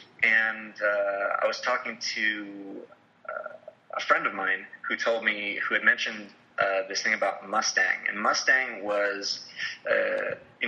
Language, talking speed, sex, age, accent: English, 150 wpm, male, 30-49, American